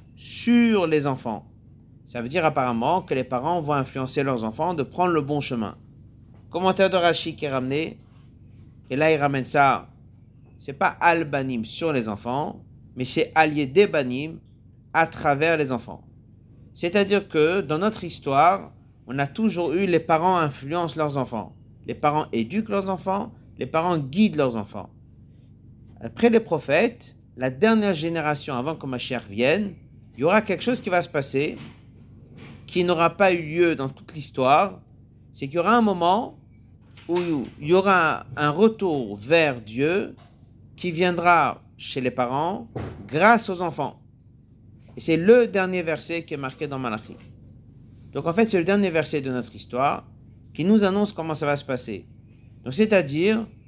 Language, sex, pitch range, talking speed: French, male, 120-170 Hz, 170 wpm